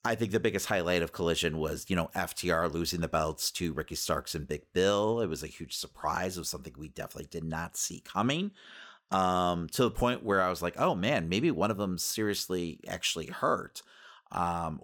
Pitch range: 80-95 Hz